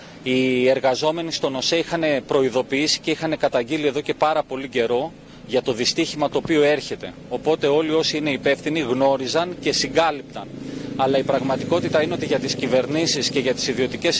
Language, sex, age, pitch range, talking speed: Greek, male, 30-49, 135-165 Hz, 170 wpm